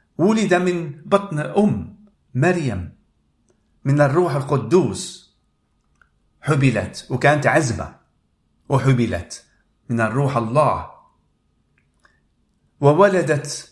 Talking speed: 70 wpm